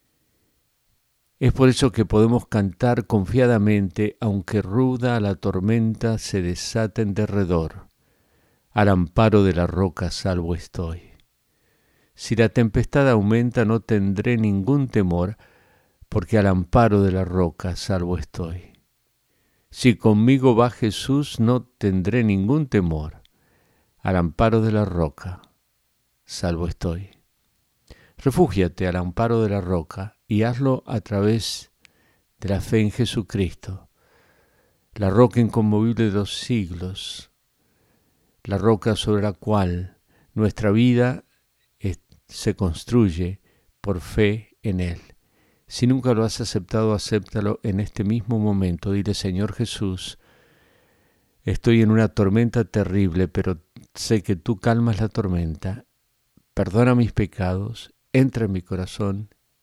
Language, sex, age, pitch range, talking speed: Spanish, male, 50-69, 95-115 Hz, 120 wpm